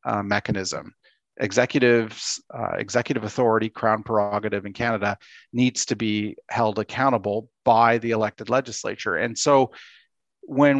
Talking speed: 120 wpm